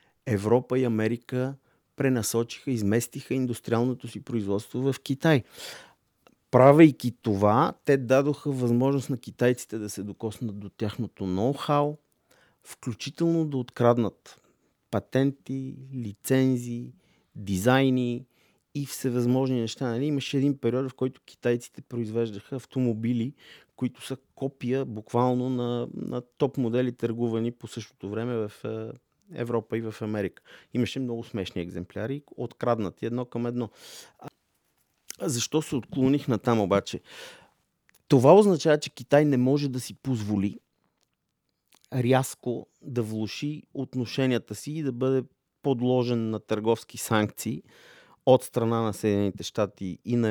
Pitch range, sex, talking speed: 115-135 Hz, male, 120 wpm